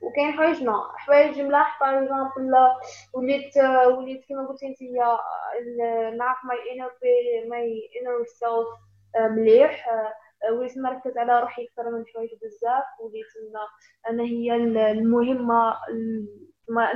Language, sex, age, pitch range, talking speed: Arabic, female, 10-29, 235-290 Hz, 100 wpm